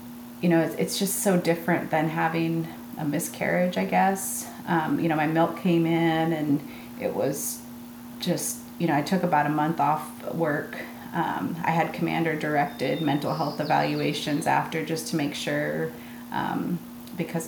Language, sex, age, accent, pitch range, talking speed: English, female, 30-49, American, 120-170 Hz, 160 wpm